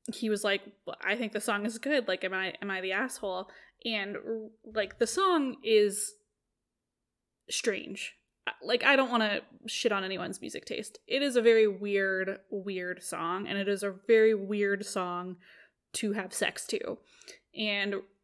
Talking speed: 170 wpm